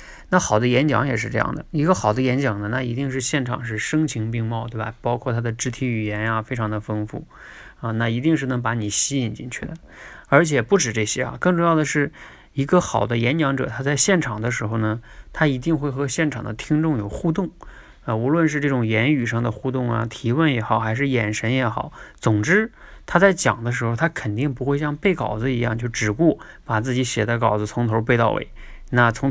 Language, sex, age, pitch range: Chinese, male, 20-39, 115-145 Hz